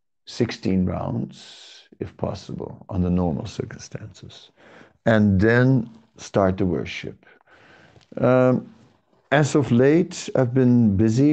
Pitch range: 95-115 Hz